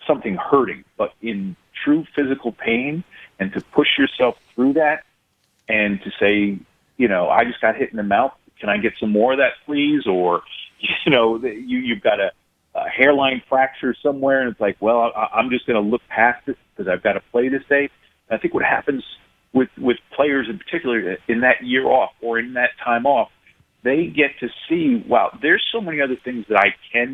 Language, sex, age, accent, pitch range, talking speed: English, male, 40-59, American, 110-140 Hz, 205 wpm